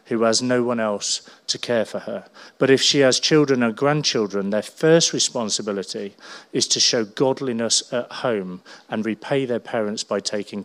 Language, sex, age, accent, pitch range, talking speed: English, male, 40-59, British, 115-145 Hz, 175 wpm